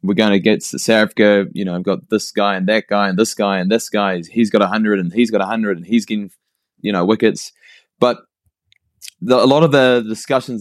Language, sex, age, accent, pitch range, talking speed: Dutch, male, 20-39, Australian, 100-120 Hz, 240 wpm